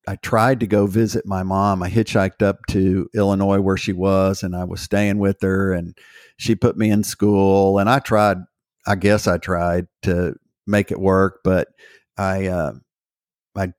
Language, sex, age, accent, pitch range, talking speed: English, male, 50-69, American, 95-105 Hz, 185 wpm